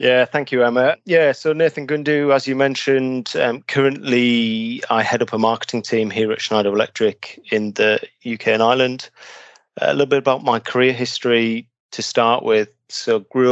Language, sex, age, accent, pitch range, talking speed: English, male, 30-49, British, 105-120 Hz, 180 wpm